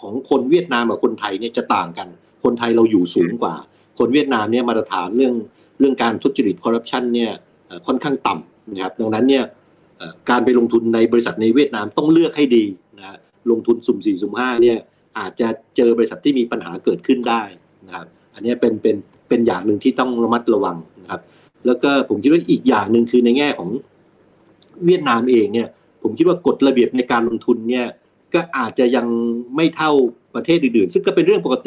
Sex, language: male, Thai